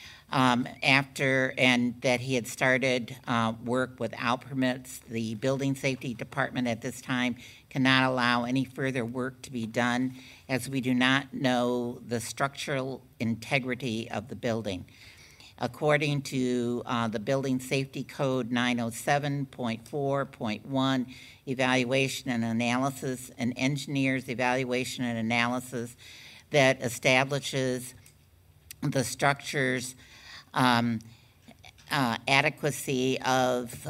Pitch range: 115-130 Hz